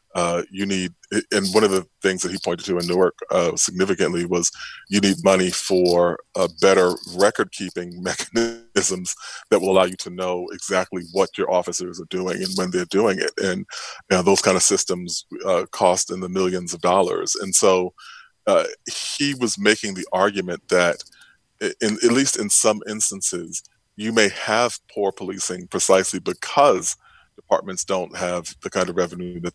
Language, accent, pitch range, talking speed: English, American, 90-100 Hz, 170 wpm